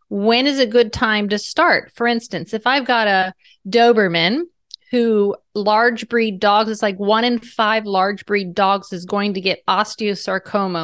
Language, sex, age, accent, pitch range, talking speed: English, female, 30-49, American, 190-235 Hz, 170 wpm